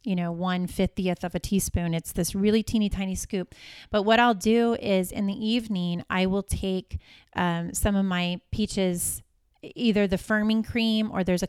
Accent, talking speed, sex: American, 190 wpm, female